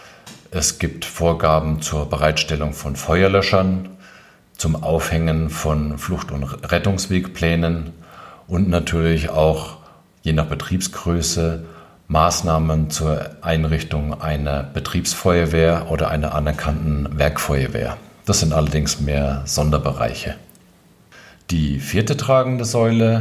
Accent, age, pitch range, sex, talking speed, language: German, 40-59, 75-90 Hz, male, 95 wpm, German